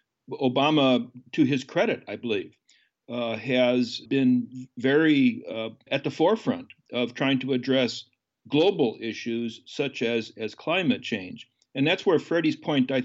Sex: male